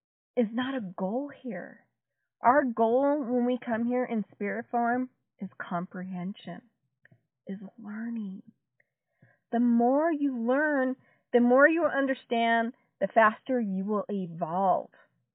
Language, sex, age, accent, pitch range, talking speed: English, female, 40-59, American, 205-270 Hz, 120 wpm